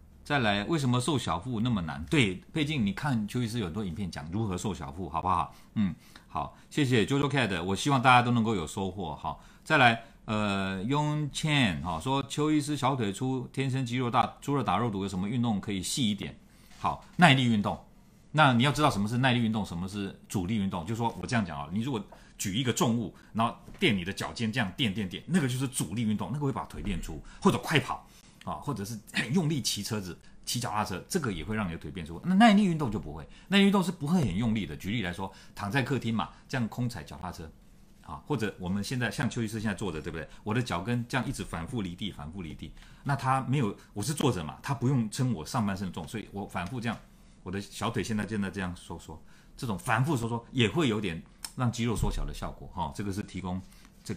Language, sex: Chinese, male